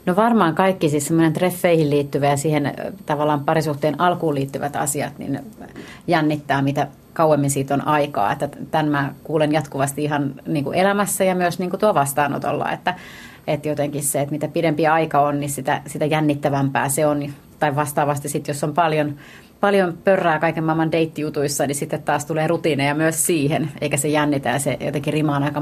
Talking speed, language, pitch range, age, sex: 175 wpm, Finnish, 145-165 Hz, 30-49, female